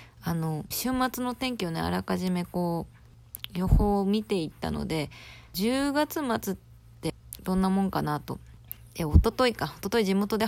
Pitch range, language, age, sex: 155-225 Hz, Japanese, 20-39, female